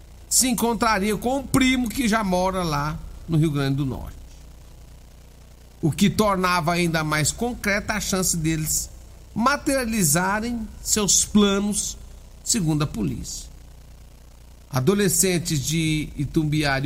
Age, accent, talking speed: 50-69, Brazilian, 115 wpm